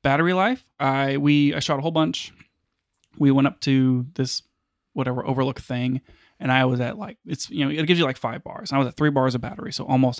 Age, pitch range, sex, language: 20-39, 115-140 Hz, male, English